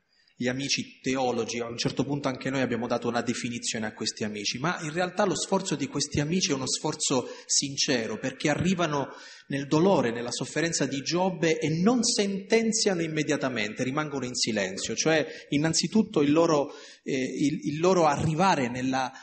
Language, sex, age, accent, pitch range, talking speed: Italian, male, 30-49, native, 135-185 Hz, 155 wpm